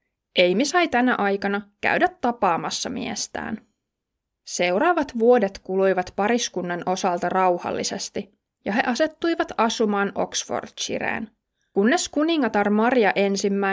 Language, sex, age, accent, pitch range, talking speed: Finnish, female, 20-39, native, 190-245 Hz, 90 wpm